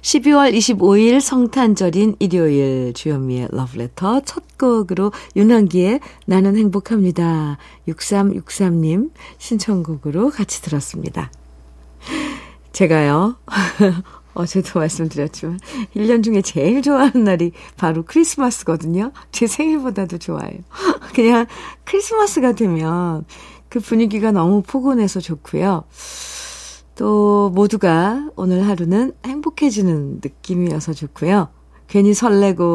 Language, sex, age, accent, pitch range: Korean, female, 50-69, native, 160-225 Hz